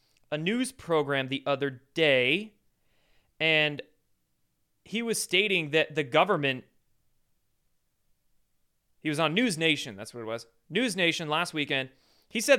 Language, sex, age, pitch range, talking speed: English, male, 30-49, 145-190 Hz, 135 wpm